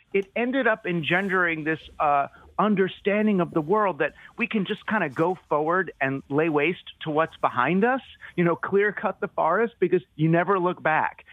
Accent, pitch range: American, 140-185 Hz